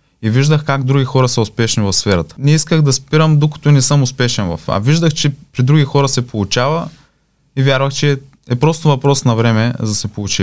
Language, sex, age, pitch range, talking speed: Bulgarian, male, 20-39, 105-140 Hz, 220 wpm